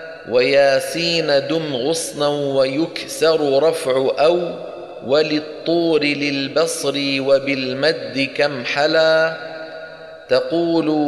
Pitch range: 135-160 Hz